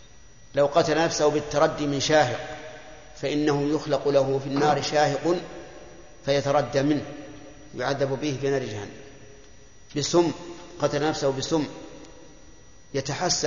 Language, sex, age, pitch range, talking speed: Arabic, male, 50-69, 135-155 Hz, 105 wpm